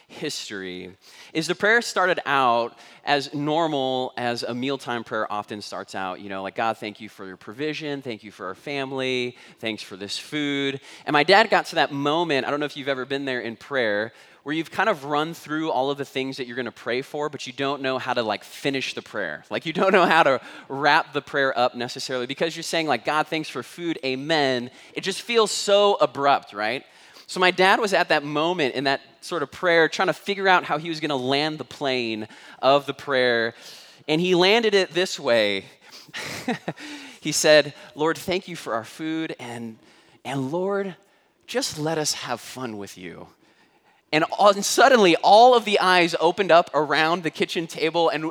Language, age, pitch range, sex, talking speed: English, 20-39, 125-170 Hz, male, 210 wpm